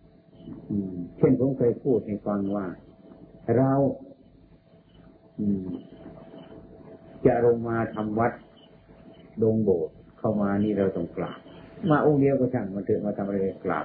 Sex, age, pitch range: male, 50-69, 95-120 Hz